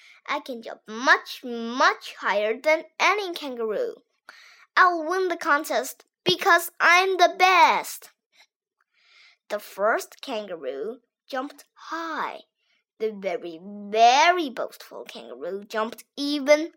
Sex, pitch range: female, 235-365 Hz